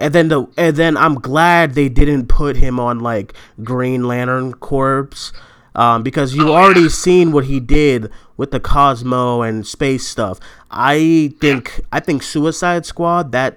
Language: English